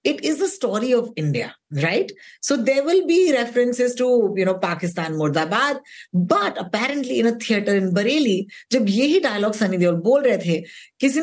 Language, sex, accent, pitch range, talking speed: Hindi, female, native, 170-245 Hz, 170 wpm